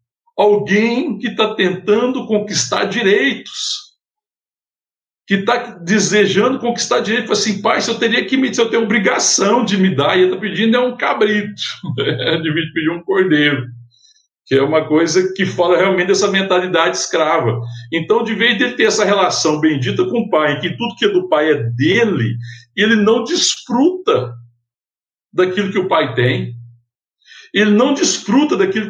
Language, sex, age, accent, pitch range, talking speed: Portuguese, male, 60-79, Brazilian, 160-240 Hz, 165 wpm